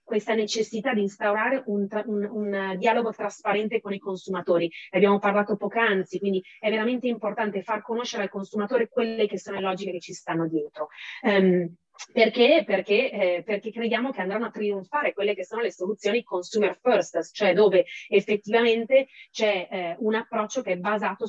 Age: 30-49